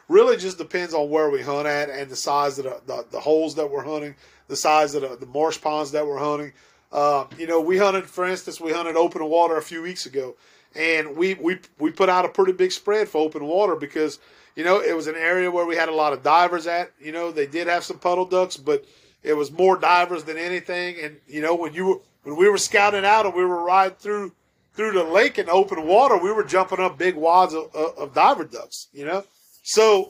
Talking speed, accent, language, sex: 245 wpm, American, English, male